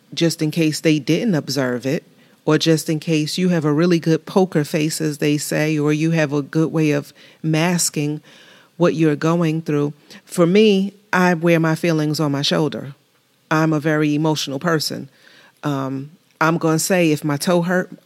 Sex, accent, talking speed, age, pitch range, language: female, American, 190 wpm, 30-49, 150-165 Hz, English